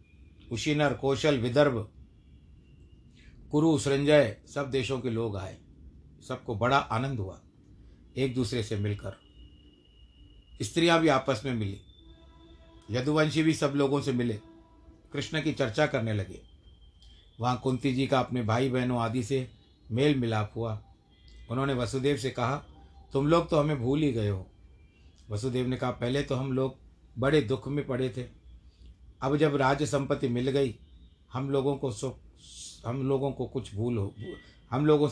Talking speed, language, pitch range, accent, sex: 150 wpm, Hindi, 95-135 Hz, native, male